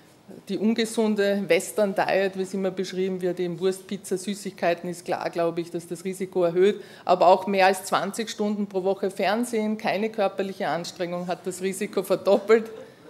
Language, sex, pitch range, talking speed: German, female, 180-205 Hz, 165 wpm